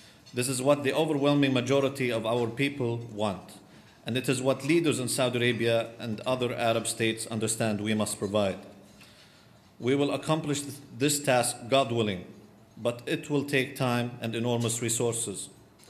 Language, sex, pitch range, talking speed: English, male, 115-135 Hz, 155 wpm